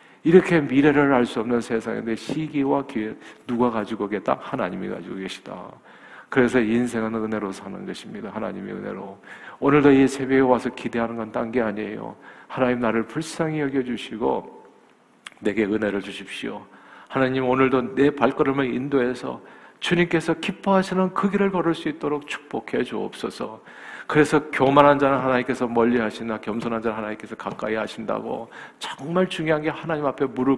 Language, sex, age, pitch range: Korean, male, 50-69, 110-140 Hz